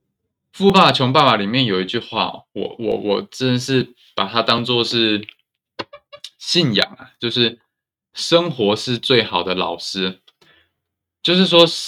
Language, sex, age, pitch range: Chinese, male, 20-39, 105-135 Hz